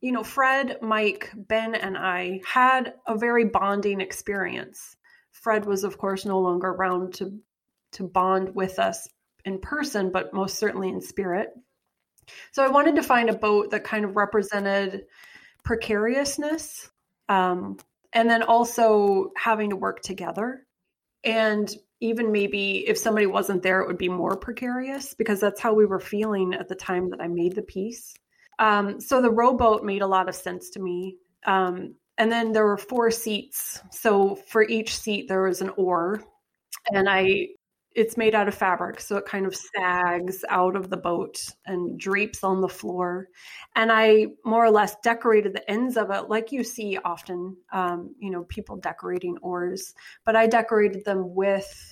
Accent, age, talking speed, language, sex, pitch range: American, 30-49, 170 wpm, English, female, 190-225 Hz